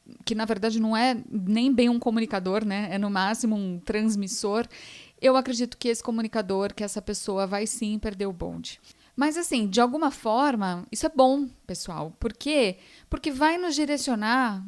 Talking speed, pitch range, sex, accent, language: 175 wpm, 205-270 Hz, female, Brazilian, Portuguese